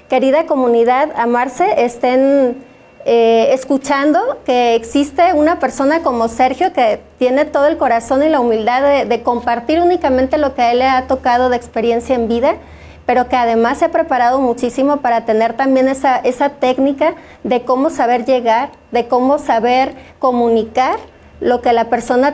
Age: 30-49